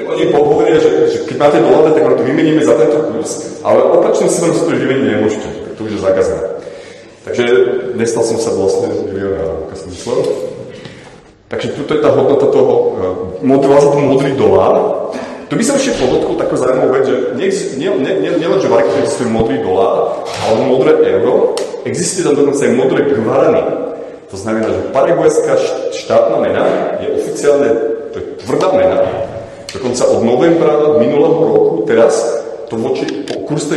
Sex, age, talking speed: male, 30-49, 165 wpm